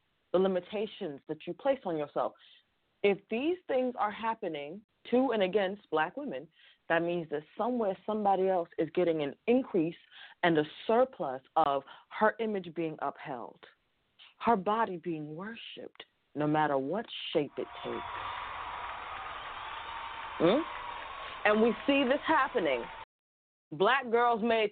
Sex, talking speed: female, 130 wpm